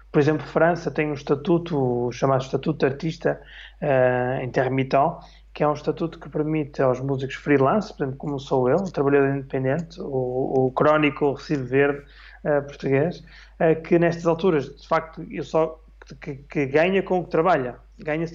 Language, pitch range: Portuguese, 140-165 Hz